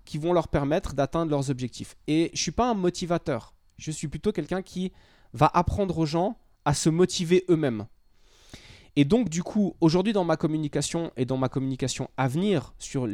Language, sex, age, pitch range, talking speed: French, male, 20-39, 135-180 Hz, 190 wpm